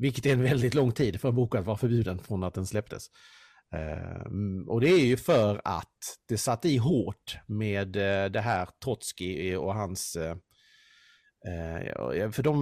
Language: Swedish